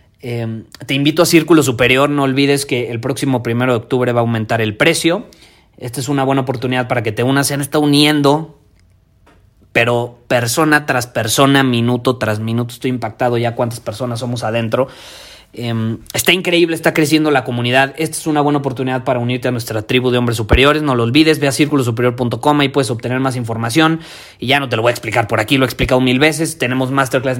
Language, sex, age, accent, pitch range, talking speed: Spanish, male, 30-49, Mexican, 115-140 Hz, 205 wpm